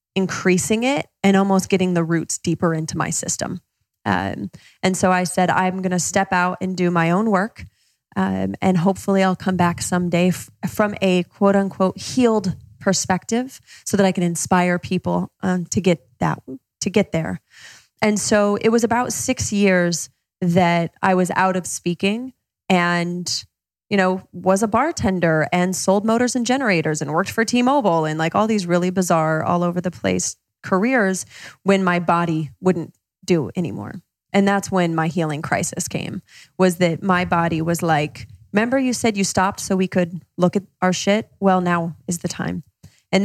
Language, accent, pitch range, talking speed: English, American, 170-195 Hz, 180 wpm